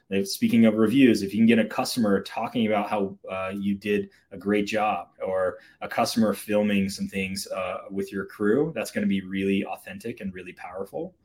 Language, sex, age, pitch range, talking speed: English, male, 20-39, 95-115 Hz, 195 wpm